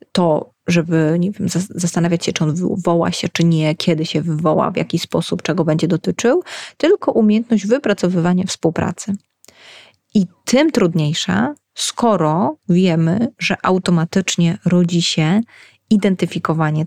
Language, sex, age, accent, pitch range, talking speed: Polish, female, 30-49, native, 165-200 Hz, 115 wpm